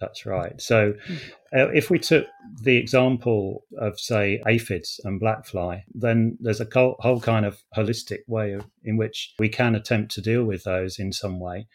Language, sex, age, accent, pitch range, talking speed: English, male, 30-49, British, 105-125 Hz, 180 wpm